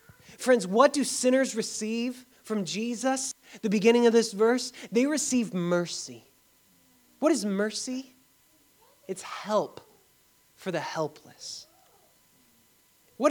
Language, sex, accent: English, male, American